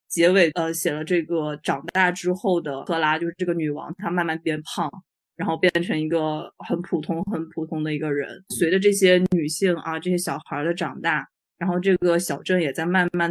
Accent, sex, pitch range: native, female, 165-200 Hz